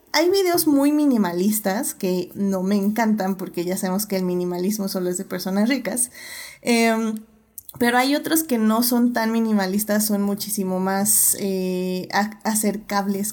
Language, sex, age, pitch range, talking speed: Spanish, female, 20-39, 195-235 Hz, 150 wpm